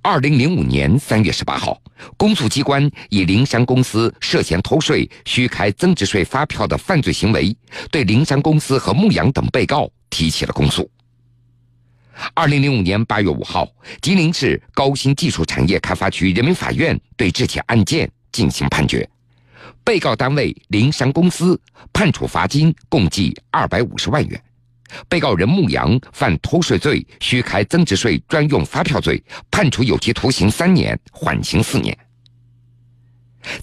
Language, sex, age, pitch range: Chinese, male, 50-69, 100-140 Hz